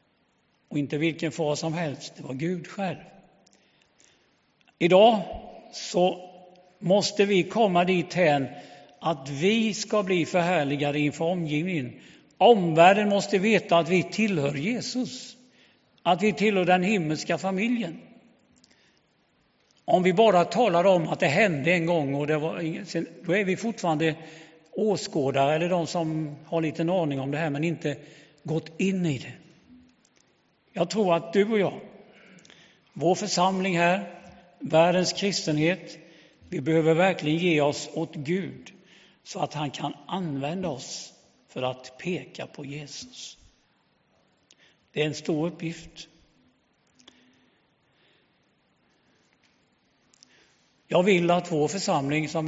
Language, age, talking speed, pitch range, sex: English, 60-79, 125 wpm, 155-190 Hz, male